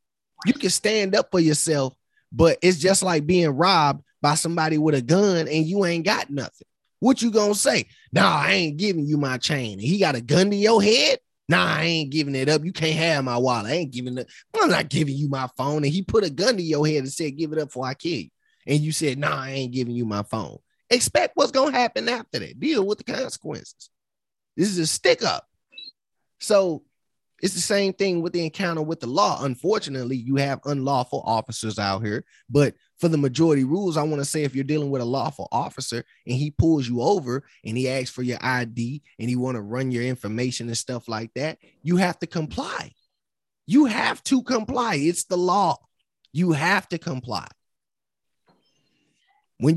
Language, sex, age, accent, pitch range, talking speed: English, male, 20-39, American, 130-190 Hz, 220 wpm